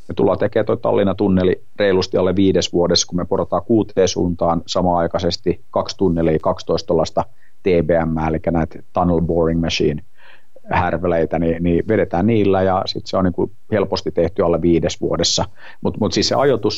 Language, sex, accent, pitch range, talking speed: Finnish, male, native, 85-95 Hz, 155 wpm